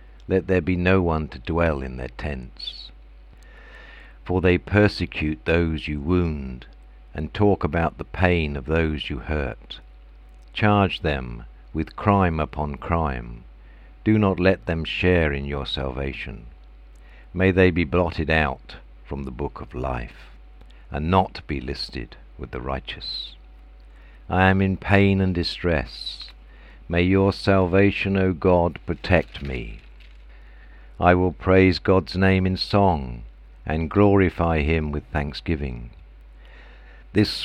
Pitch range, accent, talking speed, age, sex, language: 65-90 Hz, British, 130 wpm, 60-79, male, English